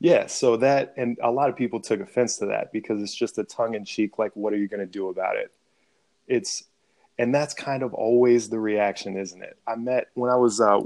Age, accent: 20-39, American